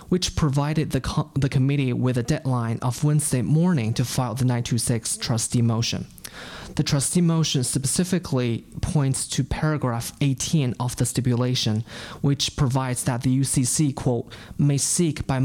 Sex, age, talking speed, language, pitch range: male, 20-39, 150 wpm, English, 125-150 Hz